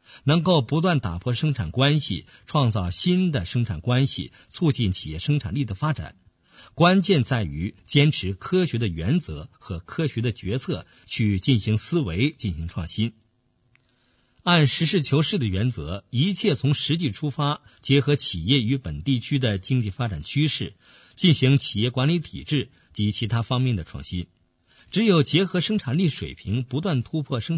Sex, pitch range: male, 110-150 Hz